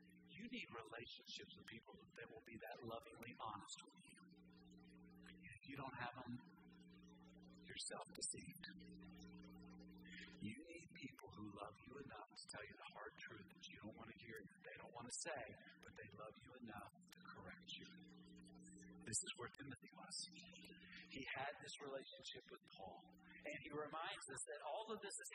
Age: 40-59